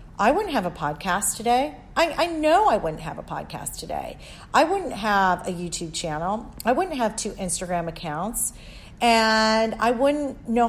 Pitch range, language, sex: 190-250 Hz, English, female